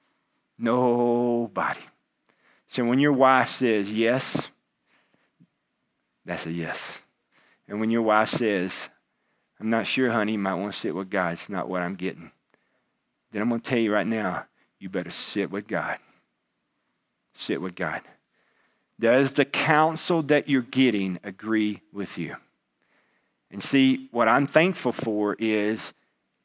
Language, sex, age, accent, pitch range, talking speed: English, male, 50-69, American, 110-140 Hz, 140 wpm